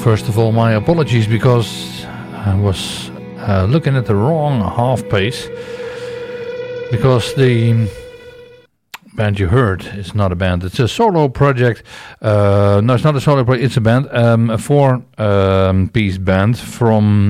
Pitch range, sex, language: 95-125 Hz, male, English